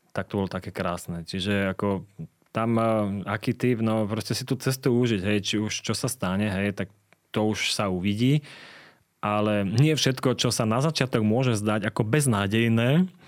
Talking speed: 175 wpm